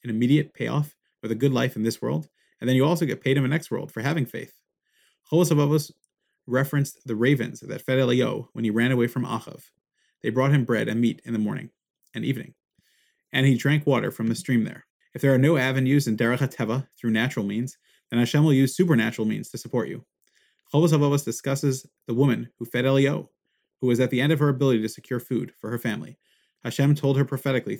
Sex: male